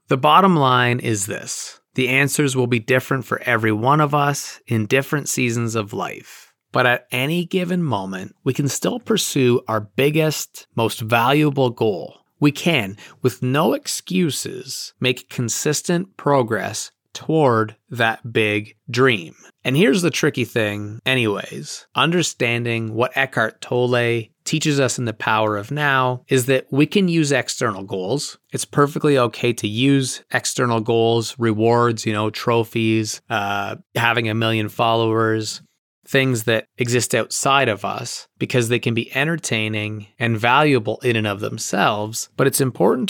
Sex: male